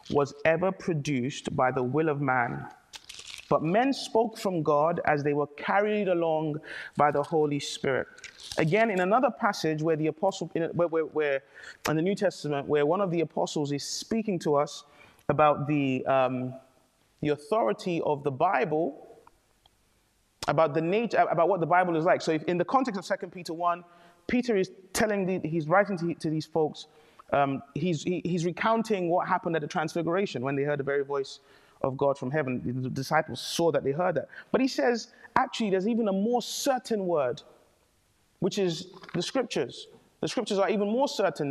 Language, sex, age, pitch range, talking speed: English, male, 30-49, 150-205 Hz, 185 wpm